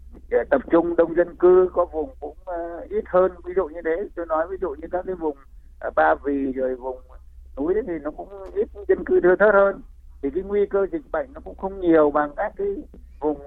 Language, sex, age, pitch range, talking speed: Vietnamese, male, 60-79, 120-165 Hz, 240 wpm